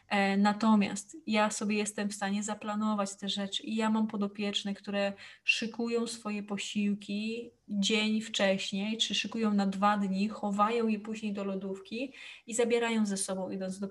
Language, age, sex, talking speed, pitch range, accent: Polish, 20-39, female, 150 wpm, 200-220 Hz, native